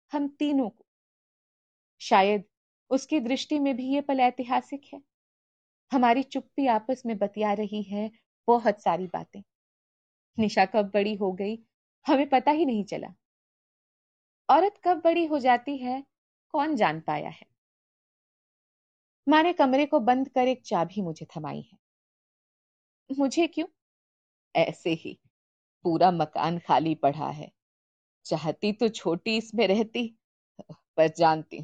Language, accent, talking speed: Hindi, native, 125 wpm